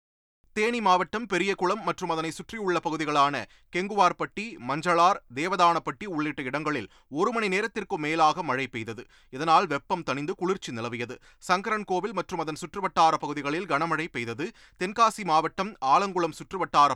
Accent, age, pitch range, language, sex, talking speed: native, 30-49, 135-180 Hz, Tamil, male, 120 wpm